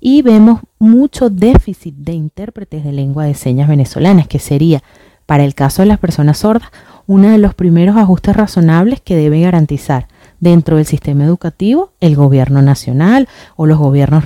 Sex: female